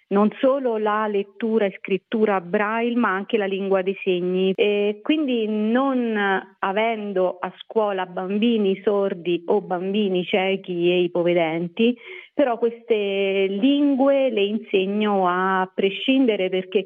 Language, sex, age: Italian, female, 40-59